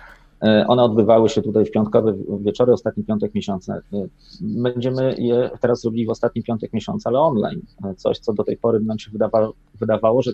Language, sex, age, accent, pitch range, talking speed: Polish, male, 30-49, native, 110-130 Hz, 175 wpm